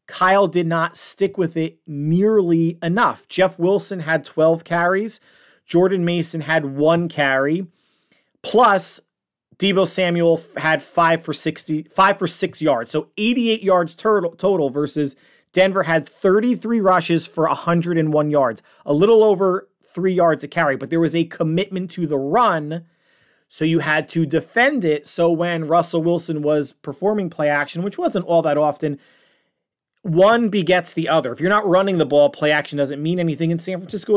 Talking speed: 160 wpm